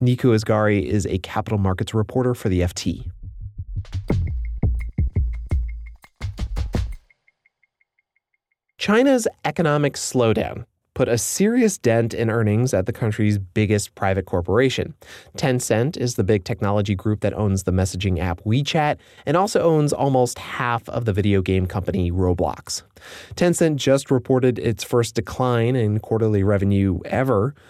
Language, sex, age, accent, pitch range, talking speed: English, male, 30-49, American, 95-125 Hz, 125 wpm